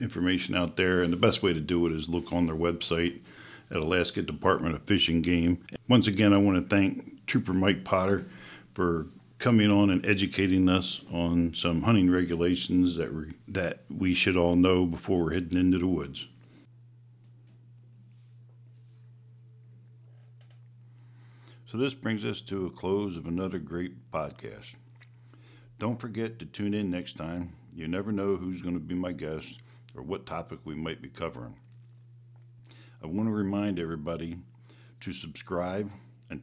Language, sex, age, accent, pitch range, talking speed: English, male, 60-79, American, 90-120 Hz, 160 wpm